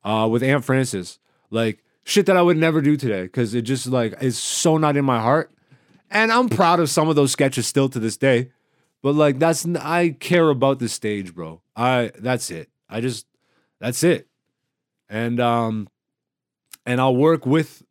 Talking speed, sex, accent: 190 wpm, male, American